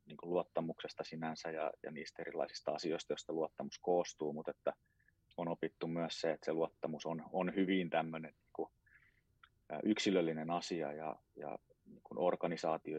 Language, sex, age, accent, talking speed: Finnish, male, 30-49, native, 145 wpm